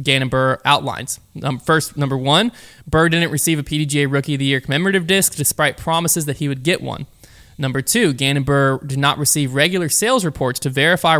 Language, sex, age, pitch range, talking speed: English, male, 20-39, 135-160 Hz, 200 wpm